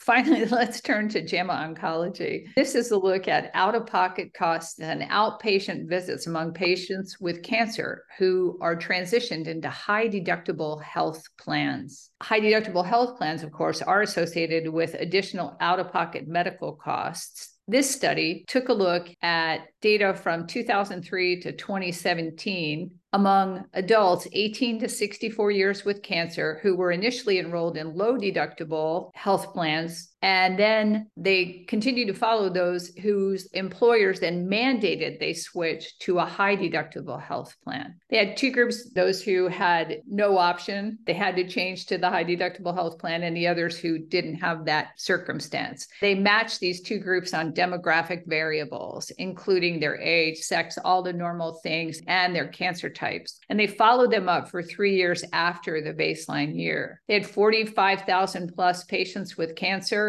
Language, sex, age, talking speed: English, female, 50-69, 150 wpm